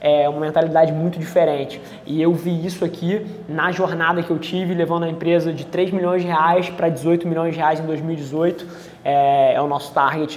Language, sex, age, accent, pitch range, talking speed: Portuguese, male, 20-39, Brazilian, 160-180 Hz, 195 wpm